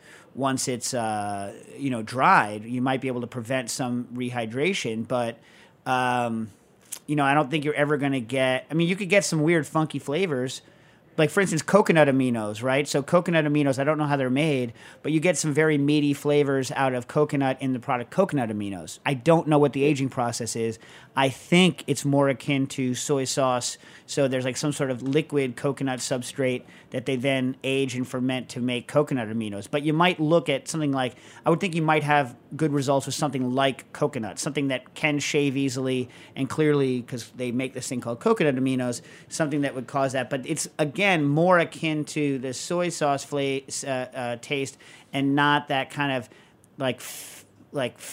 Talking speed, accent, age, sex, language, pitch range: 200 wpm, American, 40-59, male, English, 125-150 Hz